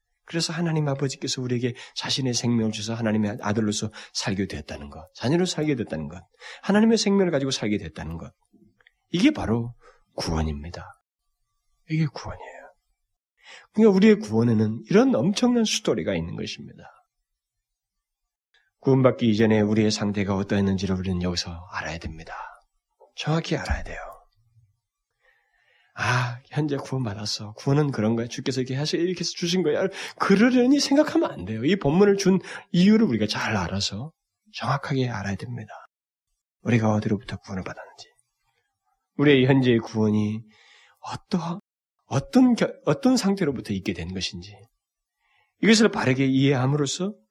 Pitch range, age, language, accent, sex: 105-165 Hz, 40-59, Korean, native, male